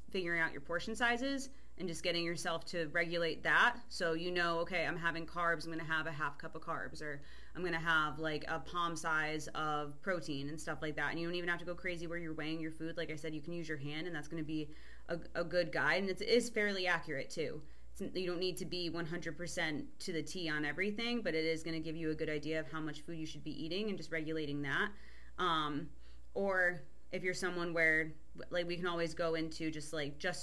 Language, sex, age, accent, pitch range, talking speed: English, female, 20-39, American, 155-175 Hz, 250 wpm